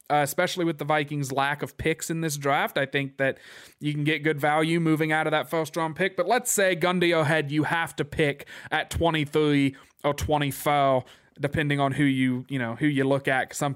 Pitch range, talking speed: 140-165 Hz, 220 wpm